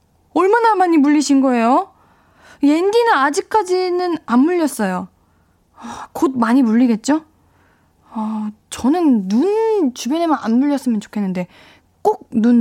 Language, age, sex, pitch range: Korean, 20-39, female, 210-310 Hz